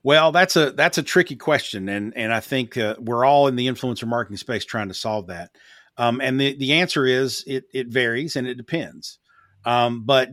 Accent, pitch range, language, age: American, 115-150 Hz, English, 50-69